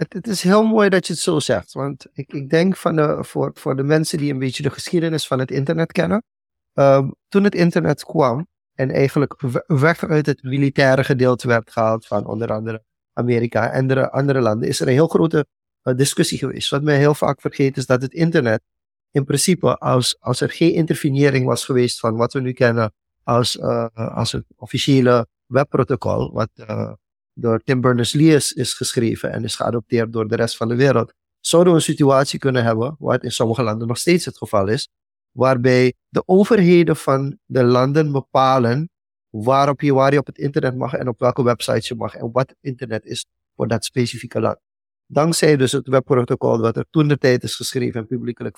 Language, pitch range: Dutch, 120-150 Hz